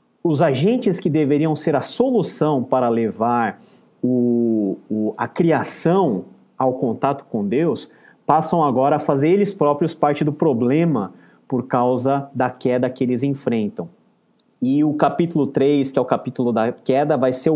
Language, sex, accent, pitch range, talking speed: Portuguese, male, Brazilian, 125-160 Hz, 145 wpm